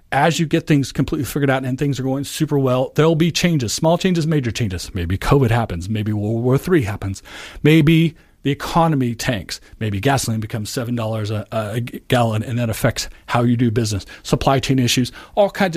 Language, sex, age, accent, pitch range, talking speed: English, male, 40-59, American, 110-145 Hz, 195 wpm